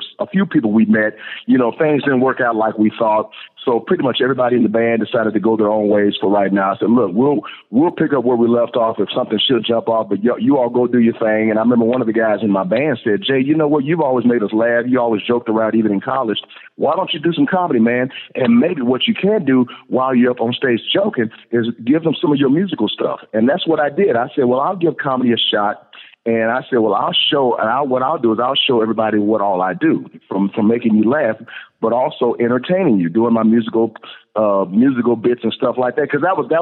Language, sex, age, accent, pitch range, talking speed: English, male, 40-59, American, 110-130 Hz, 265 wpm